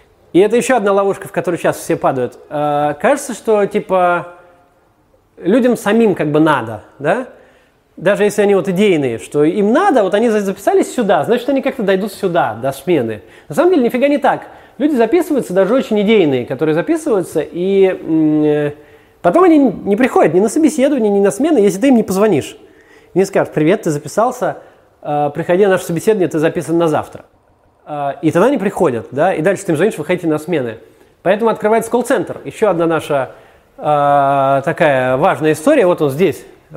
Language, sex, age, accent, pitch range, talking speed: Russian, male, 20-39, native, 155-235 Hz, 175 wpm